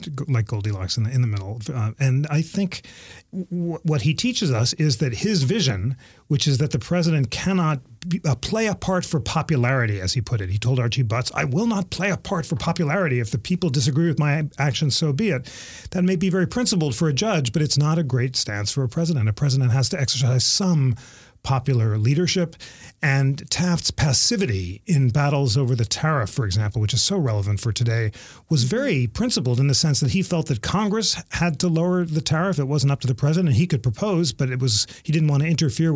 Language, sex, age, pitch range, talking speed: English, male, 40-59, 120-160 Hz, 225 wpm